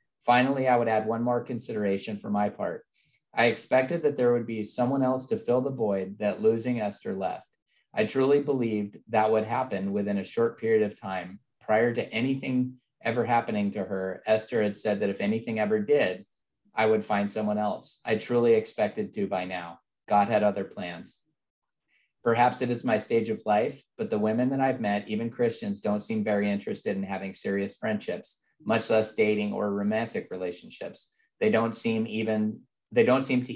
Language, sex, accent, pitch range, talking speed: English, male, American, 105-120 Hz, 190 wpm